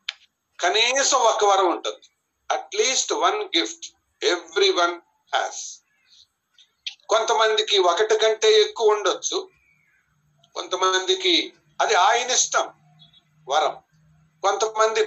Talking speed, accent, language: 85 wpm, native, Telugu